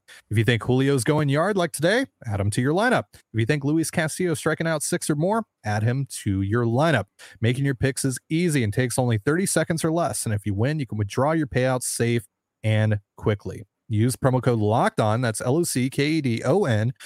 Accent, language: American, English